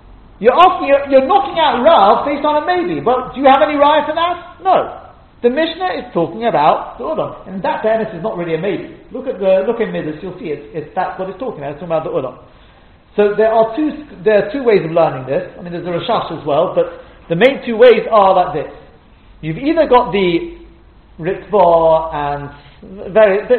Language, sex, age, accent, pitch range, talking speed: English, male, 40-59, British, 165-255 Hz, 225 wpm